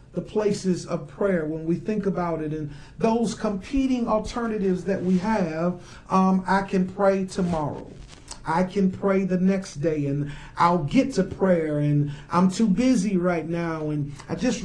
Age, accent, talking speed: 40-59, American, 170 wpm